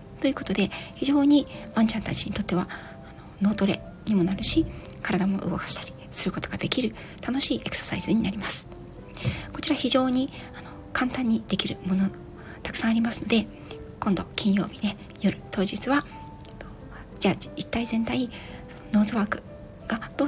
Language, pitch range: Japanese, 190-245 Hz